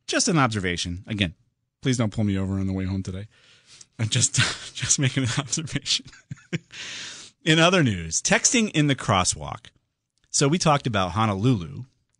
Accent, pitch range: American, 90-130 Hz